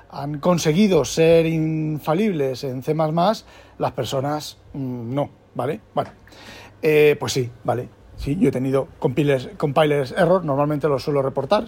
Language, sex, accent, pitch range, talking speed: Spanish, male, Spanish, 130-170 Hz, 140 wpm